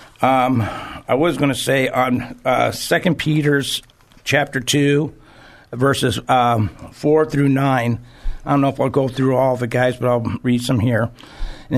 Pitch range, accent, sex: 125-145 Hz, American, male